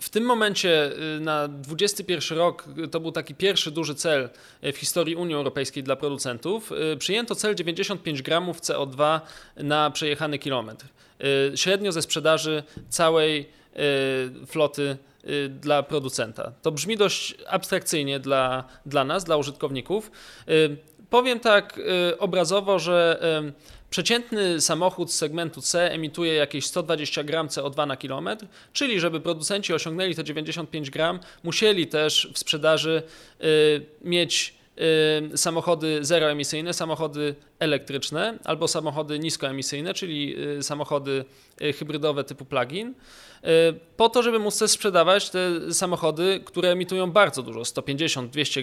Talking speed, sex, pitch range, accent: 120 wpm, male, 145-180 Hz, native